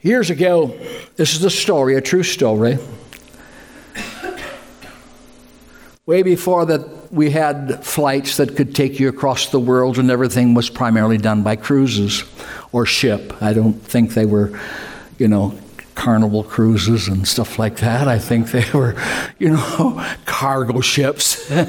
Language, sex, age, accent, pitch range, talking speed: English, male, 60-79, American, 110-150 Hz, 145 wpm